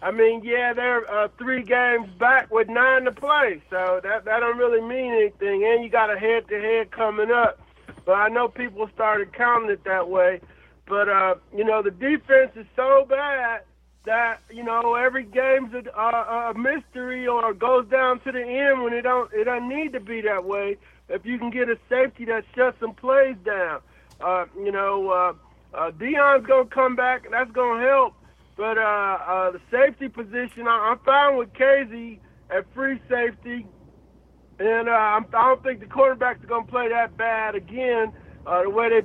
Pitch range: 220-260 Hz